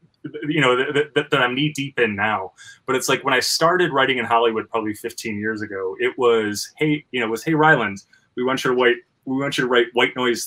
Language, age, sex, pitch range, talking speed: English, 20-39, male, 115-145 Hz, 250 wpm